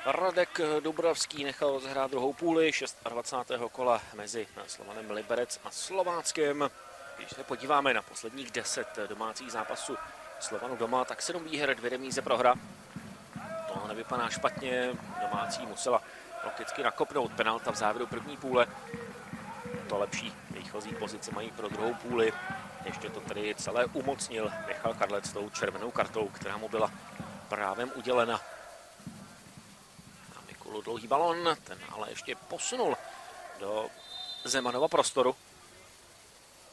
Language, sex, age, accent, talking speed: Russian, male, 30-49, Czech, 120 wpm